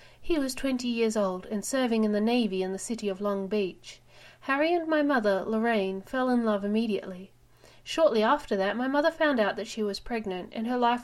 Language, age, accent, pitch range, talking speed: English, 40-59, Australian, 195-255 Hz, 210 wpm